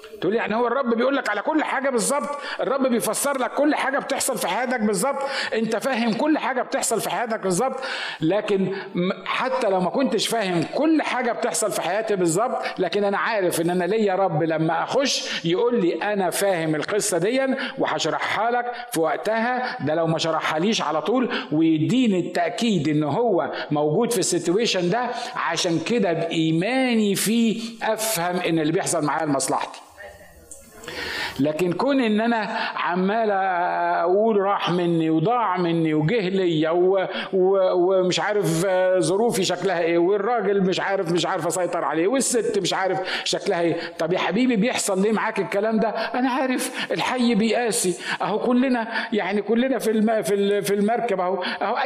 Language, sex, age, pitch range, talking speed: Arabic, male, 50-69, 175-240 Hz, 150 wpm